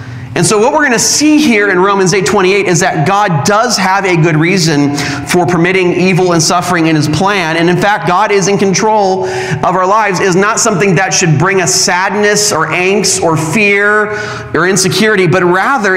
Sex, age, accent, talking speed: male, 30-49, American, 200 wpm